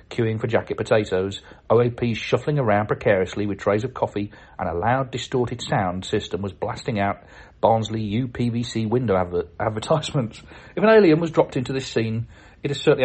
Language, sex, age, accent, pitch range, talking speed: English, male, 40-59, British, 105-140 Hz, 170 wpm